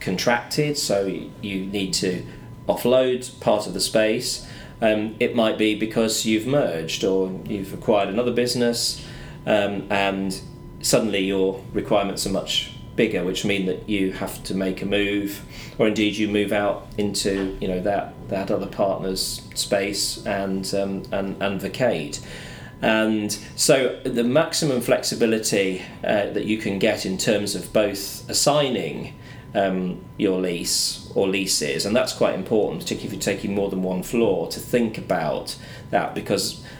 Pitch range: 95-115 Hz